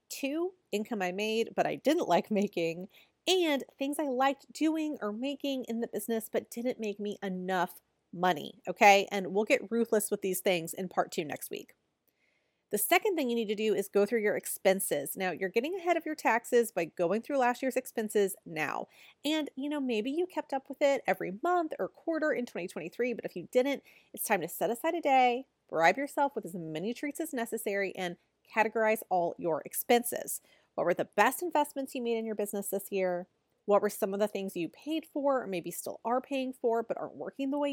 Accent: American